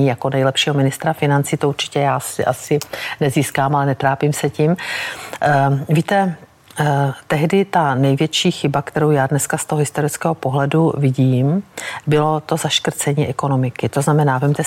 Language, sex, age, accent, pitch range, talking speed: Czech, female, 50-69, native, 135-160 Hz, 140 wpm